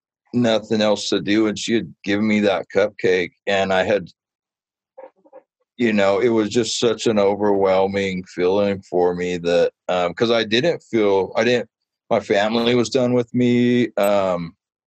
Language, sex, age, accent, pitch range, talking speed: English, male, 50-69, American, 95-135 Hz, 160 wpm